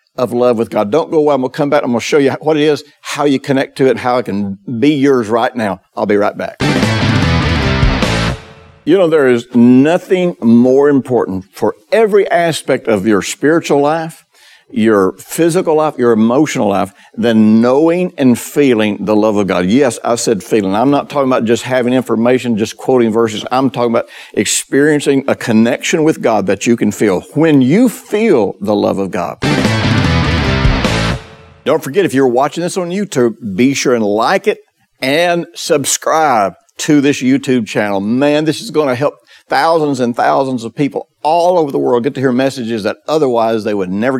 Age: 60-79